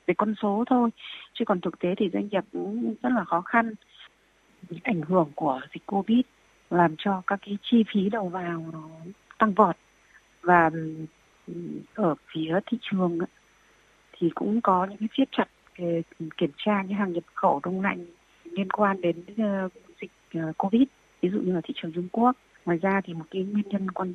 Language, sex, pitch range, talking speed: Vietnamese, female, 180-230 Hz, 185 wpm